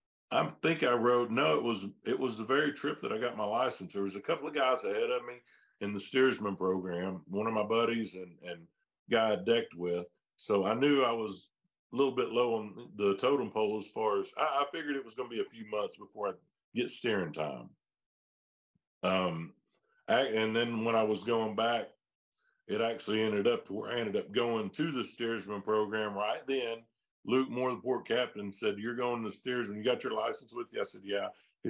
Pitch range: 100-125 Hz